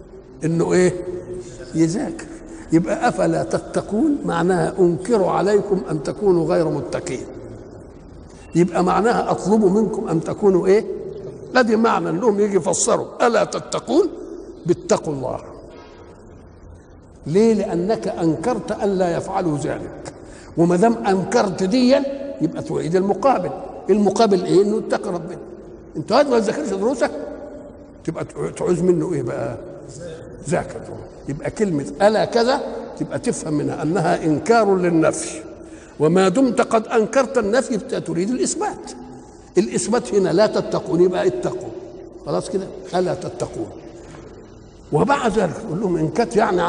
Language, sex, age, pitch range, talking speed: Arabic, male, 60-79, 170-240 Hz, 120 wpm